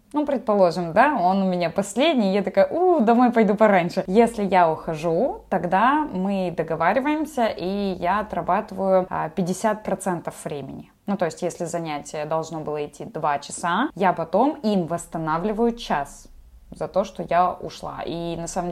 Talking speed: 150 wpm